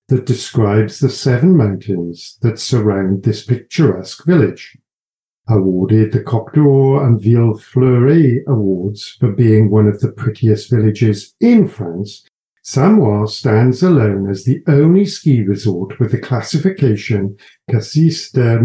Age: 50-69